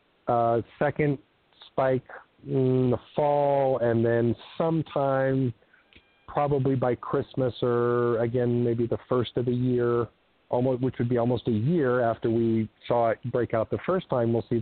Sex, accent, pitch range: male, American, 115-125 Hz